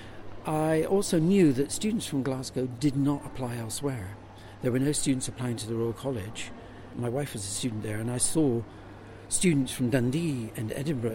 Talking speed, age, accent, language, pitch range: 185 wpm, 60-79, British, English, 110-135 Hz